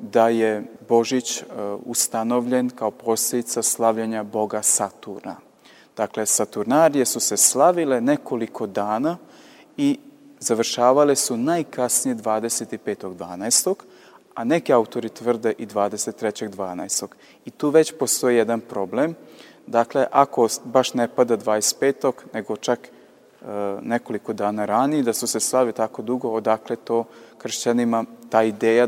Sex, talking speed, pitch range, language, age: male, 120 wpm, 110-135 Hz, Croatian, 30-49